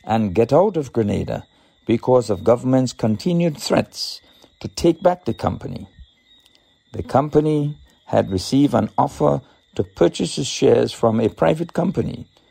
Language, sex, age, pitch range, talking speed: English, male, 50-69, 110-150 Hz, 140 wpm